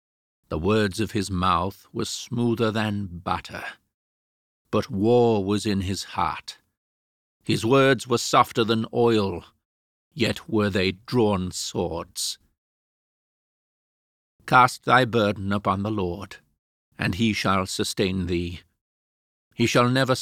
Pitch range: 90-115 Hz